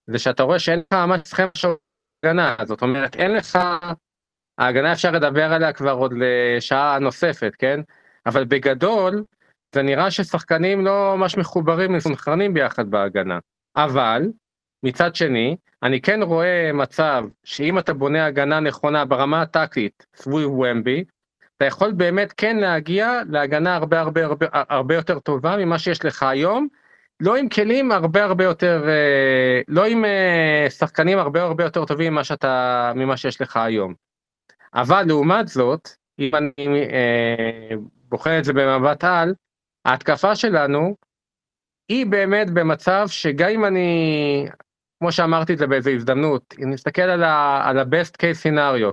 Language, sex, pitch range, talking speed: Hebrew, male, 140-180 Hz, 140 wpm